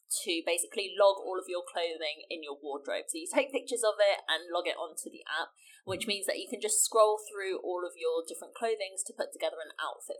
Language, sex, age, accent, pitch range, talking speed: English, female, 20-39, British, 190-290 Hz, 235 wpm